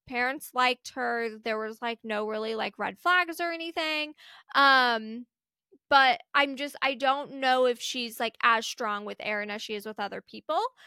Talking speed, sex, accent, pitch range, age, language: 180 wpm, female, American, 225-285 Hz, 20-39, English